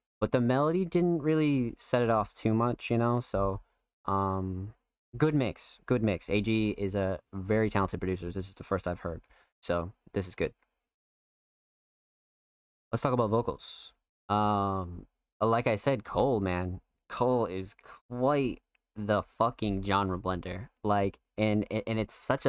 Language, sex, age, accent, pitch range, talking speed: English, male, 20-39, American, 100-125 Hz, 150 wpm